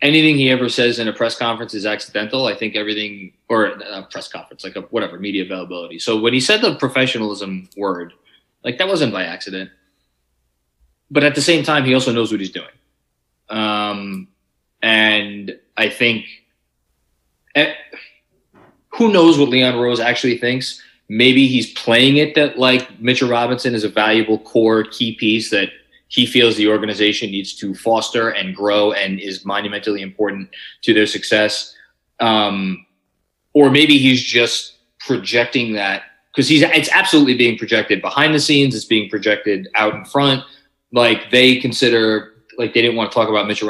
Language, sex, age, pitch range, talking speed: English, male, 20-39, 105-130 Hz, 165 wpm